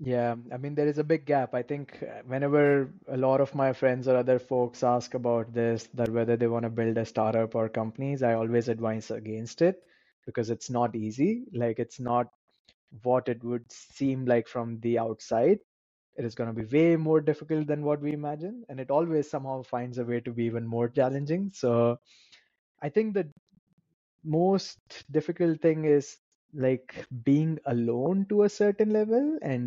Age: 20-39